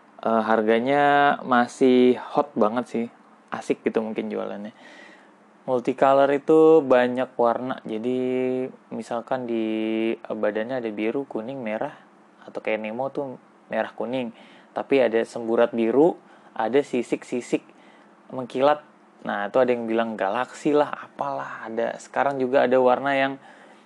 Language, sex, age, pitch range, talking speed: Indonesian, male, 20-39, 115-145 Hz, 125 wpm